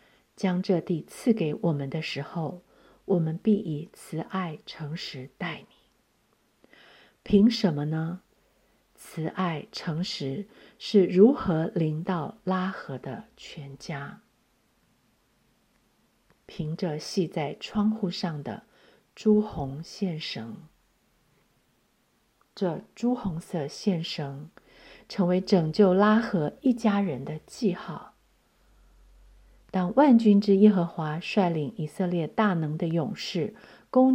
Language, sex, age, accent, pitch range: Chinese, female, 50-69, native, 160-210 Hz